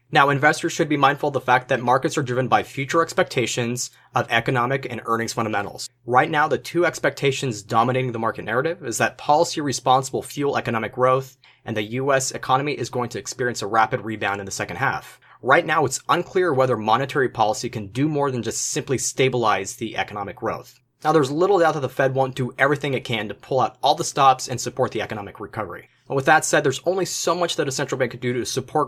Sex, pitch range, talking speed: male, 120-140 Hz, 225 wpm